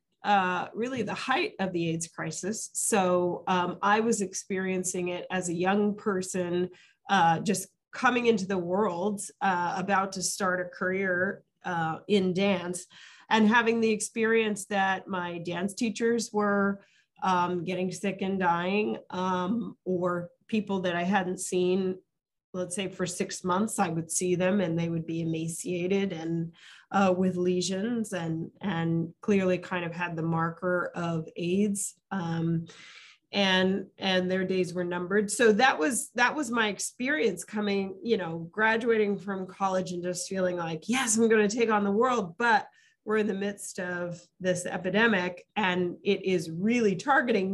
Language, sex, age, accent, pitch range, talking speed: French, female, 30-49, American, 180-215 Hz, 160 wpm